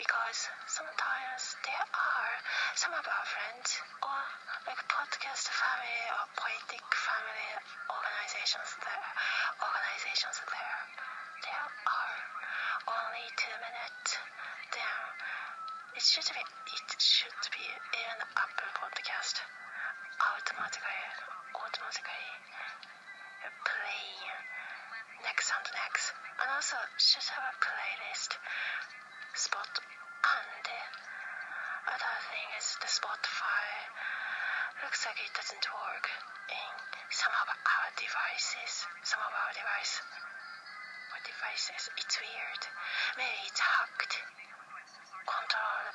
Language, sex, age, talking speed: English, female, 30-49, 100 wpm